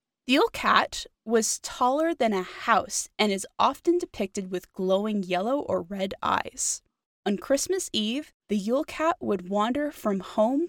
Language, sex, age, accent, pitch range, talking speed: English, female, 20-39, American, 195-285 Hz, 155 wpm